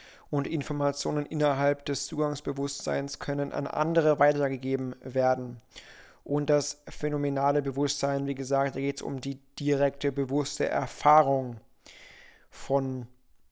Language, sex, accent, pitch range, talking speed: German, male, German, 140-160 Hz, 105 wpm